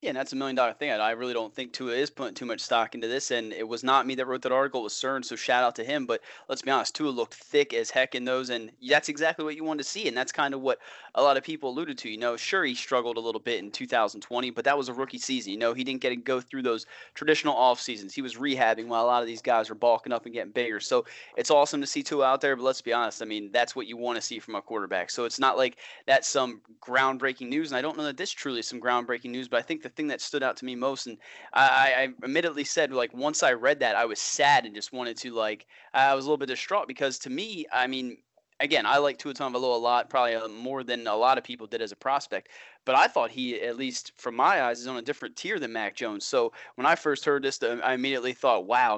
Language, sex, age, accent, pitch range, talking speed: English, male, 30-49, American, 120-140 Hz, 290 wpm